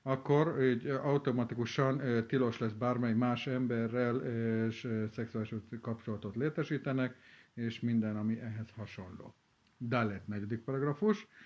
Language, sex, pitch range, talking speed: Hungarian, male, 115-140 Hz, 100 wpm